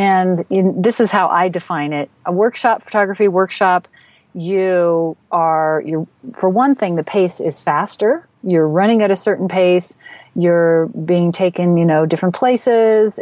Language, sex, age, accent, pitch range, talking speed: English, female, 40-59, American, 160-200 Hz, 150 wpm